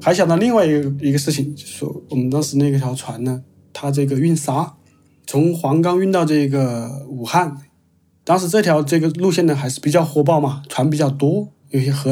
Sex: male